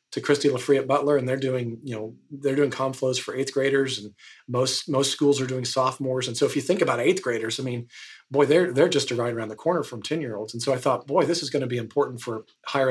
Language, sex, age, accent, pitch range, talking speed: English, male, 40-59, American, 120-140 Hz, 280 wpm